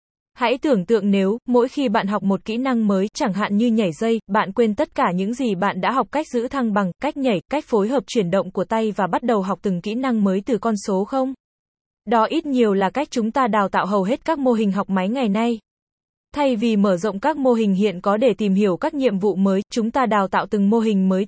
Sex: female